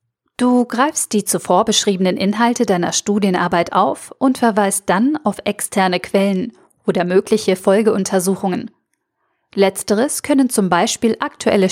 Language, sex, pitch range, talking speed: German, female, 185-225 Hz, 120 wpm